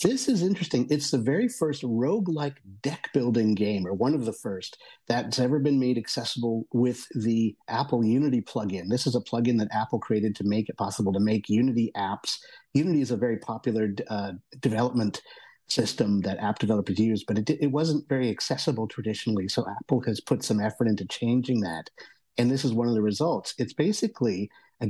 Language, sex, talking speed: English, male, 190 wpm